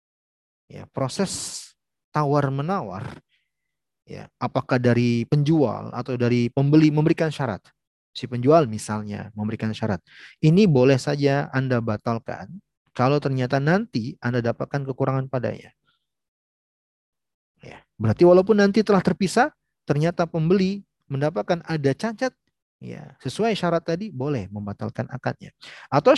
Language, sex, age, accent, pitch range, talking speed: Indonesian, male, 30-49, native, 120-180 Hz, 110 wpm